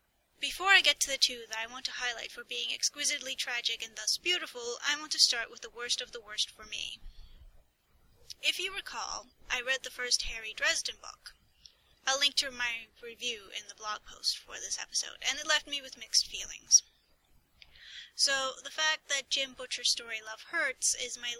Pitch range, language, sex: 230-290 Hz, English, female